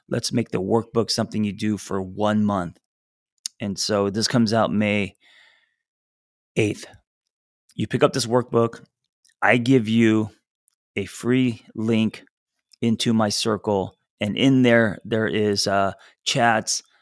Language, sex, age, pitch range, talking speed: English, male, 30-49, 105-115 Hz, 135 wpm